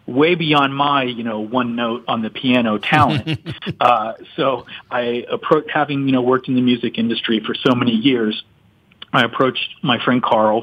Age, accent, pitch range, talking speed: 40-59, American, 115-135 Hz, 180 wpm